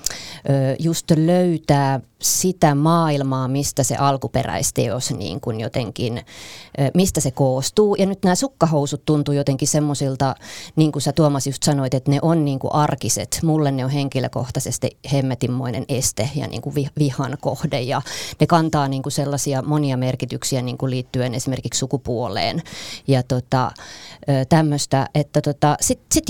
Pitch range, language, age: 130-155 Hz, Finnish, 30-49